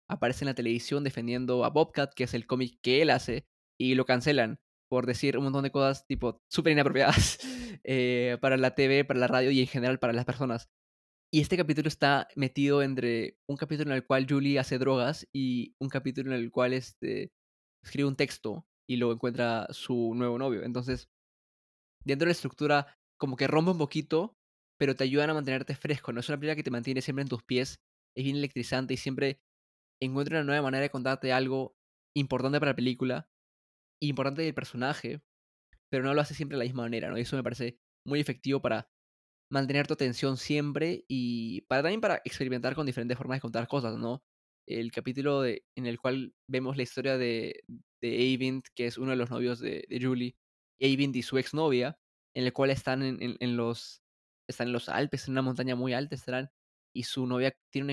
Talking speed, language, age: 200 wpm, Spanish, 20-39